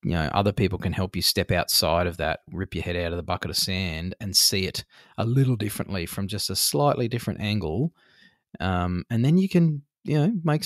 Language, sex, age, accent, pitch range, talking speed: English, male, 20-39, Australian, 105-140 Hz, 225 wpm